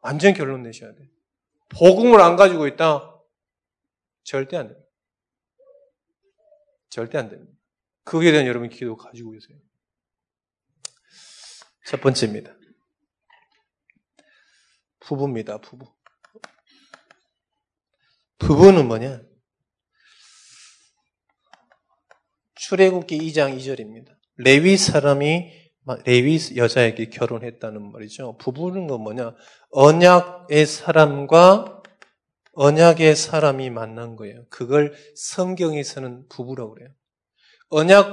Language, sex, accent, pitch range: Korean, male, native, 125-175 Hz